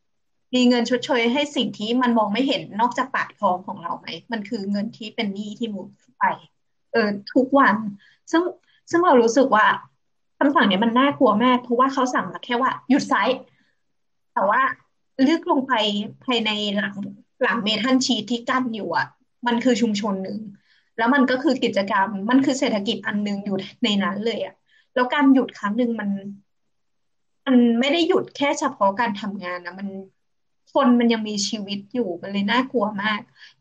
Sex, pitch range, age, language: female, 210-260 Hz, 20-39, Thai